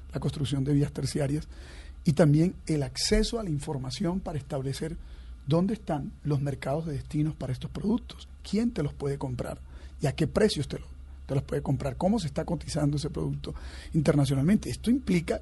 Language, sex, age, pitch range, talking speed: Spanish, male, 40-59, 135-170 Hz, 180 wpm